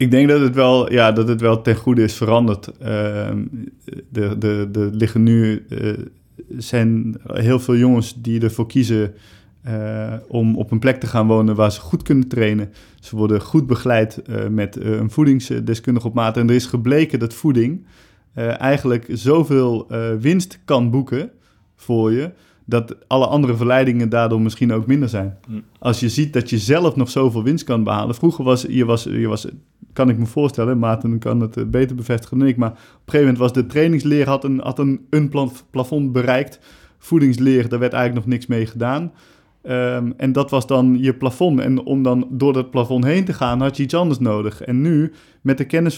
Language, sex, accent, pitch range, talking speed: Dutch, male, Dutch, 115-135 Hz, 200 wpm